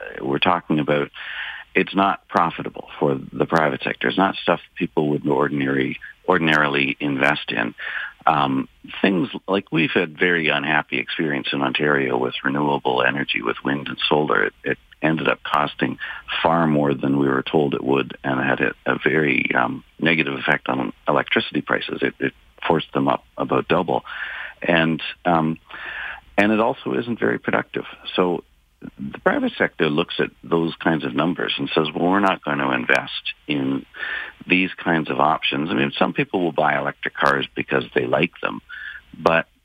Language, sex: English, male